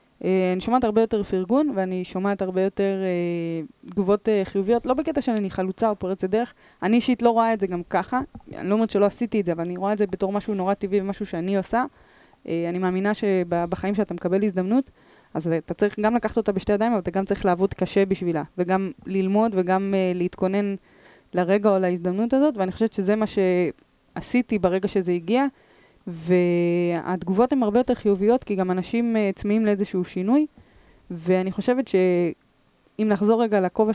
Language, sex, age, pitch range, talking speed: Hebrew, female, 20-39, 185-225 Hz, 185 wpm